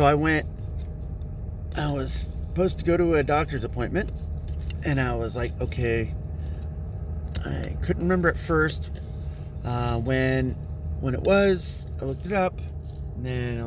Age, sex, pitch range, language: 30-49, male, 75-115 Hz, English